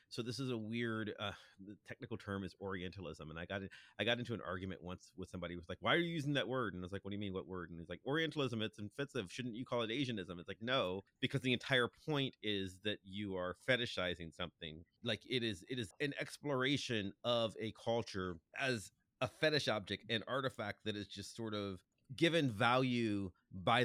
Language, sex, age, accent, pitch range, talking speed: English, male, 30-49, American, 100-140 Hz, 225 wpm